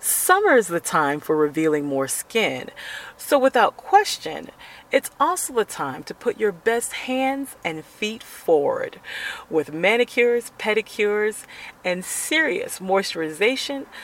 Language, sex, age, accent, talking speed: English, female, 40-59, American, 125 wpm